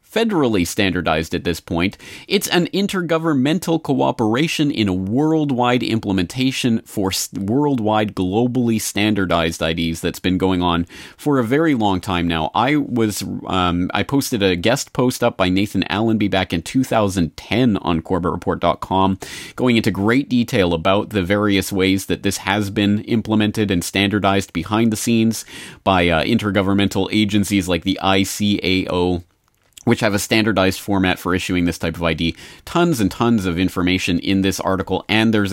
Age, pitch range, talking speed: 30-49, 85-110 Hz, 155 wpm